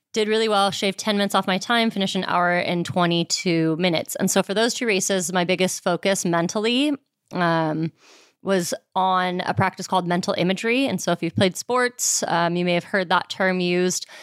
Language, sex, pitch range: English, female, 180-205 Hz